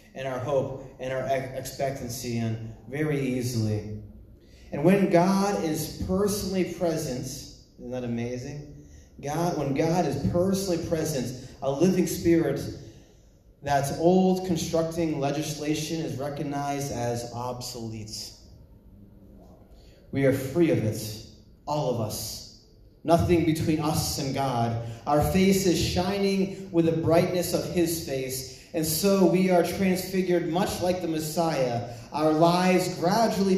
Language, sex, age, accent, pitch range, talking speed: English, male, 30-49, American, 125-180 Hz, 125 wpm